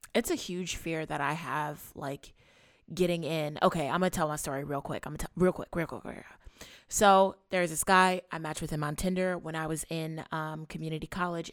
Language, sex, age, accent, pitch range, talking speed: English, female, 20-39, American, 155-195 Hz, 220 wpm